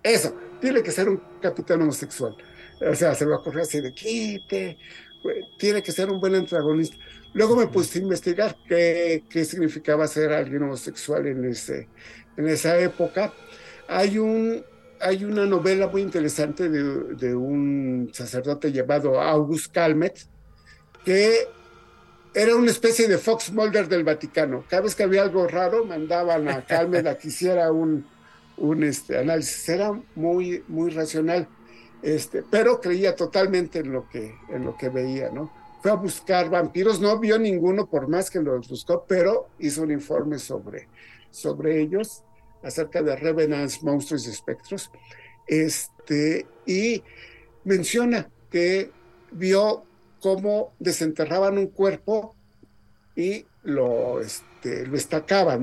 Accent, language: Mexican, Spanish